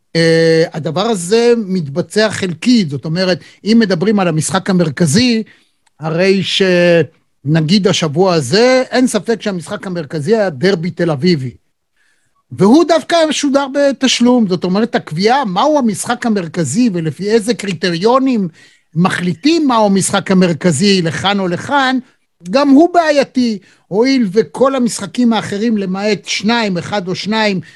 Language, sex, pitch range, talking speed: Hebrew, male, 175-240 Hz, 120 wpm